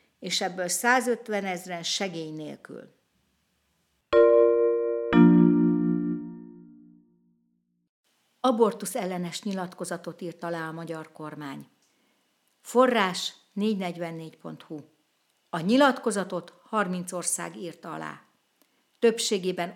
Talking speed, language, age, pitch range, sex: 70 wpm, Hungarian, 60-79, 170-205 Hz, female